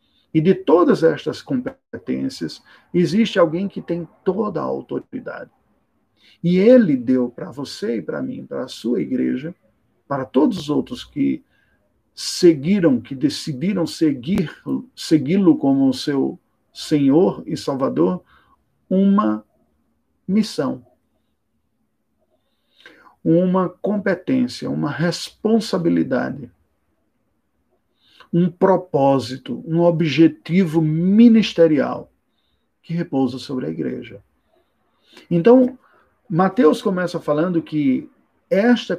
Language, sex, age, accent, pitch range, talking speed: Portuguese, male, 50-69, Brazilian, 155-220 Hz, 90 wpm